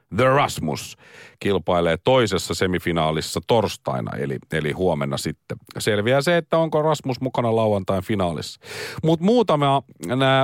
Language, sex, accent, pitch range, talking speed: Finnish, male, native, 95-130 Hz, 120 wpm